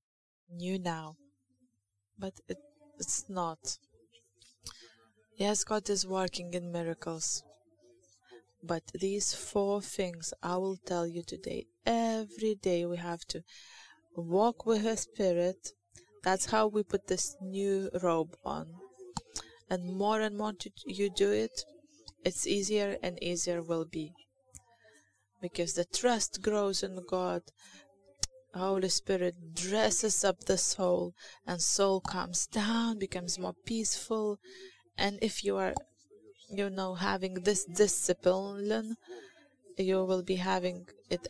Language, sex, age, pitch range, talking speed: English, female, 20-39, 175-210 Hz, 120 wpm